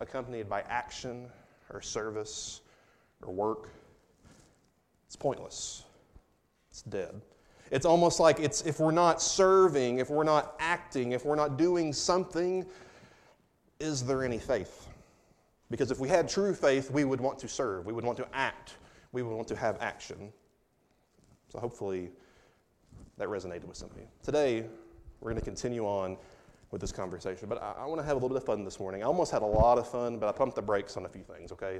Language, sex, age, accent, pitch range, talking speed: English, male, 30-49, American, 110-170 Hz, 190 wpm